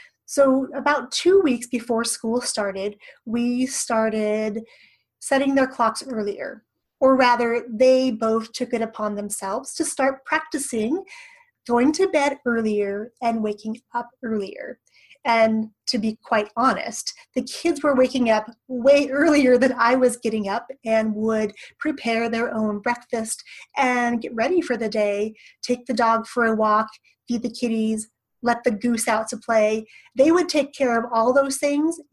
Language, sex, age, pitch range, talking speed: English, female, 30-49, 220-260 Hz, 155 wpm